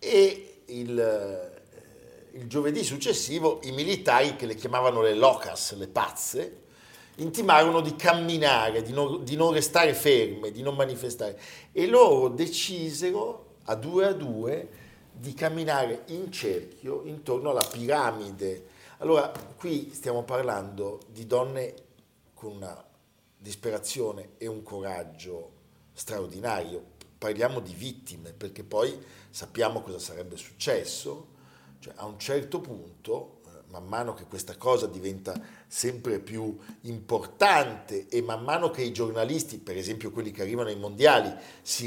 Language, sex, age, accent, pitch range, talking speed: Italian, male, 50-69, native, 105-160 Hz, 130 wpm